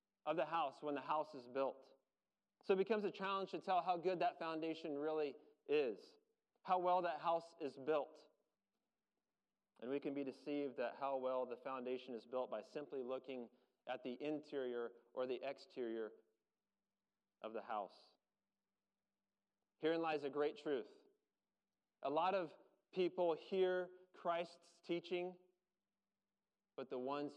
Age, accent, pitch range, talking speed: 30-49, American, 135-180 Hz, 145 wpm